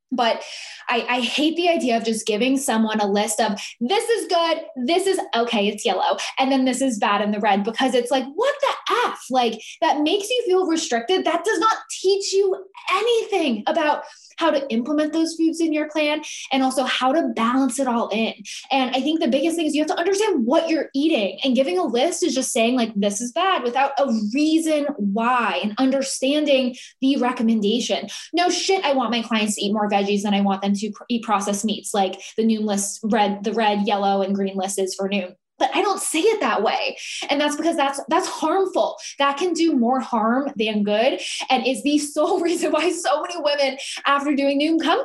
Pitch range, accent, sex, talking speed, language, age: 225-325 Hz, American, female, 215 wpm, English, 20-39